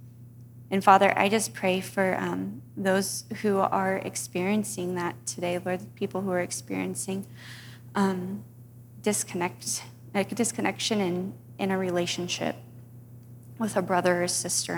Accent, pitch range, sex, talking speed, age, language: American, 120-195 Hz, female, 130 wpm, 30-49, English